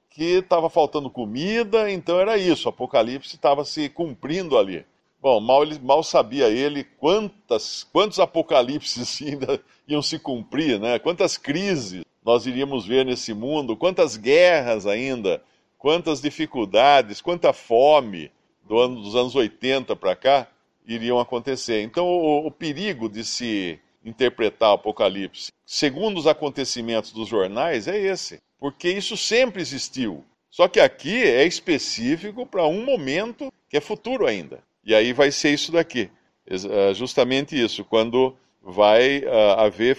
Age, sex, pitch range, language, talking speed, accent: 50-69, male, 115-160 Hz, Portuguese, 135 wpm, Brazilian